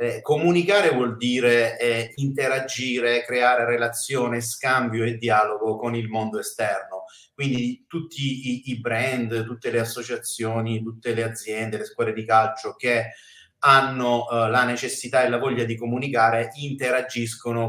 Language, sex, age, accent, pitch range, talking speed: Italian, male, 30-49, native, 115-130 Hz, 140 wpm